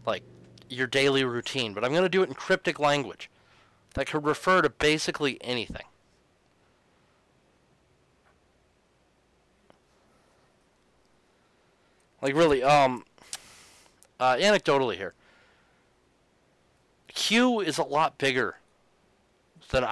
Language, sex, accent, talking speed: English, male, American, 95 wpm